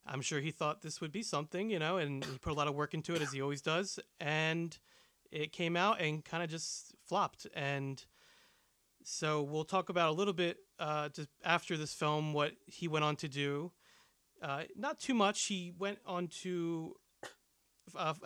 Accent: American